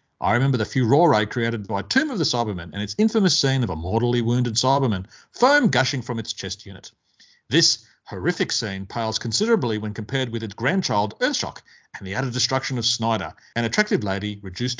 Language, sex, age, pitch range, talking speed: English, male, 40-59, 110-145 Hz, 185 wpm